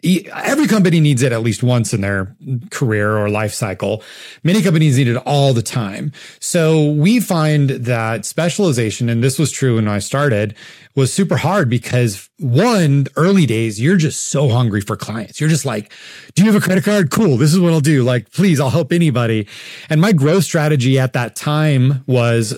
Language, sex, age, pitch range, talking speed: English, male, 30-49, 120-165 Hz, 195 wpm